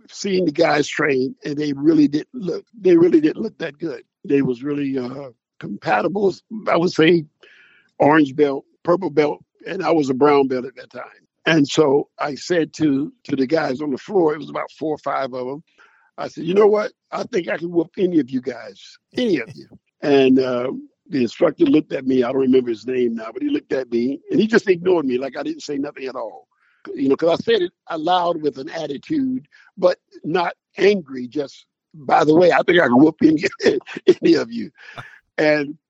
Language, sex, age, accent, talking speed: English, male, 50-69, American, 215 wpm